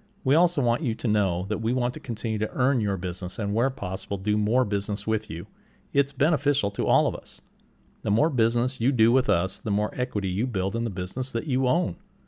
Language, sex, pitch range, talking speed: English, male, 100-135 Hz, 230 wpm